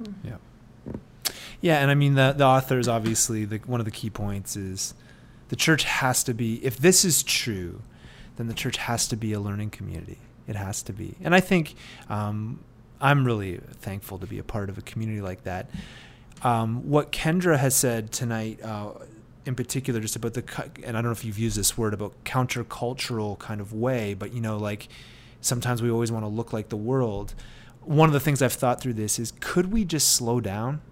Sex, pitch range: male, 110-135 Hz